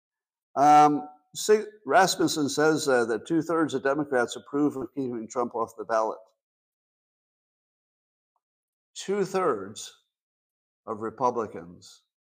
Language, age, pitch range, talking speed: English, 50-69, 110-155 Hz, 85 wpm